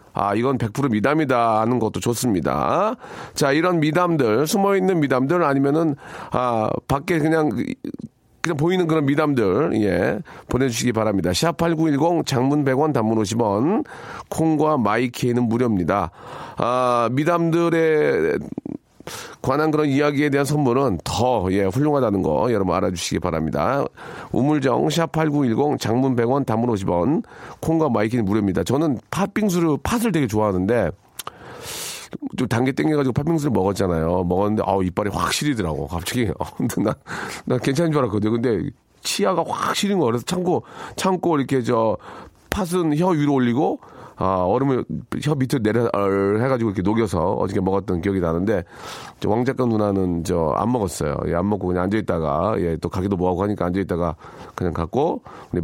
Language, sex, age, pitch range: Korean, male, 40-59, 100-150 Hz